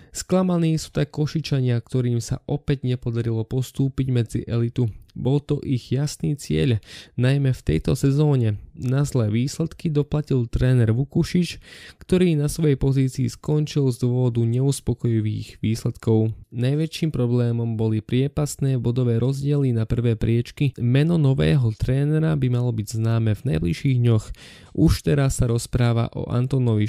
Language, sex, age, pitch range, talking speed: Slovak, male, 20-39, 110-140 Hz, 130 wpm